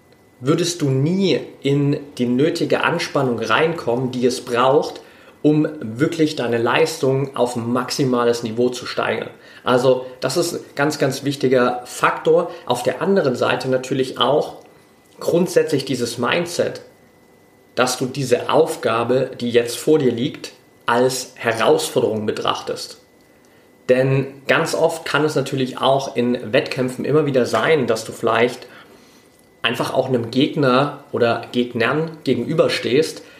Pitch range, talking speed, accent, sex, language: 120-145 Hz, 130 wpm, German, male, German